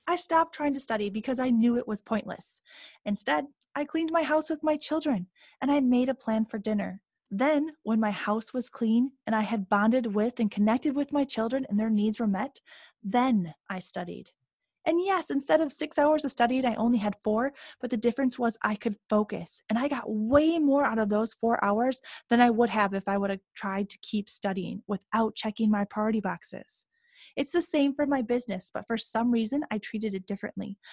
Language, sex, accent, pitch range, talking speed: English, female, American, 210-280 Hz, 215 wpm